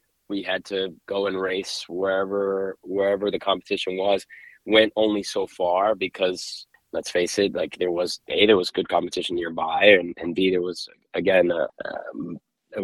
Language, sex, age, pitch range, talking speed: English, male, 20-39, 90-100 Hz, 170 wpm